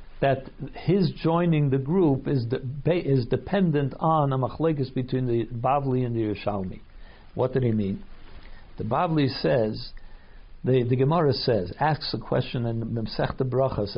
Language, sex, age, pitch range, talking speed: English, male, 60-79, 125-160 Hz, 155 wpm